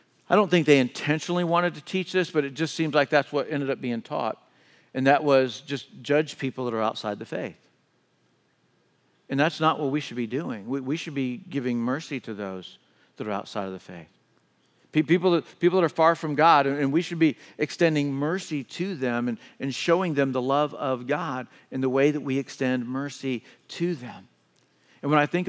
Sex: male